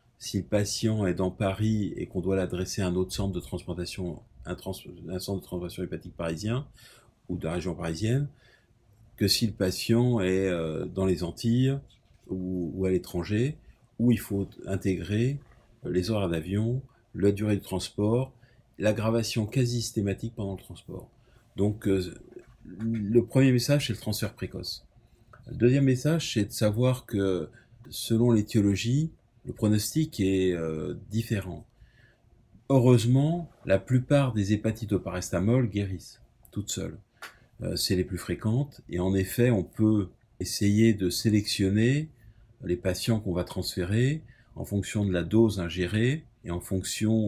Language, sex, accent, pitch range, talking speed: French, male, French, 95-120 Hz, 150 wpm